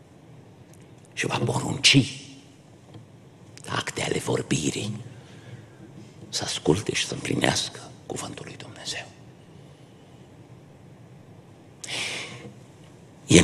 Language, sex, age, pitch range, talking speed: Romanian, male, 60-79, 135-150 Hz, 65 wpm